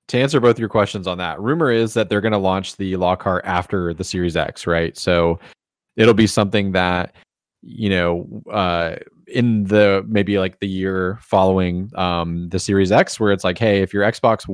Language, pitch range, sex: English, 90-105 Hz, male